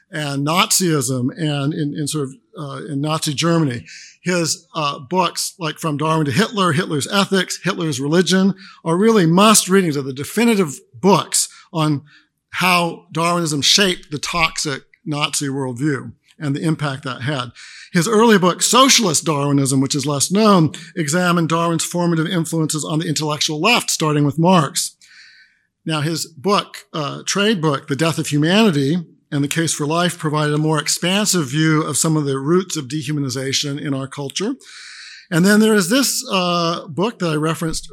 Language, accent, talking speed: English, American, 165 wpm